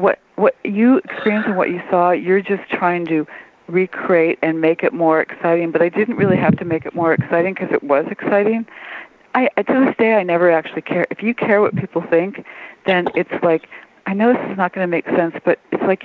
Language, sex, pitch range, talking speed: English, female, 165-200 Hz, 225 wpm